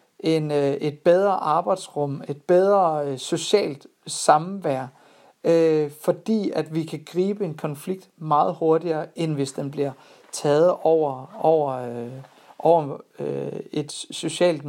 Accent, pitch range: native, 145-180 Hz